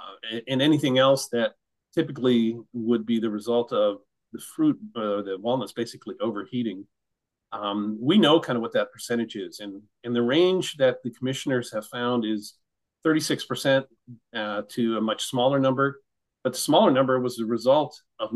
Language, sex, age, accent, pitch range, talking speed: English, male, 40-59, American, 110-130 Hz, 165 wpm